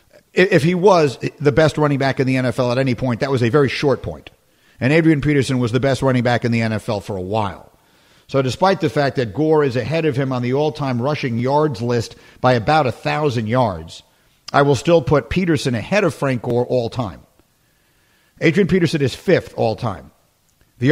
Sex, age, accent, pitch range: male, 50-69, American, 120-155 Hz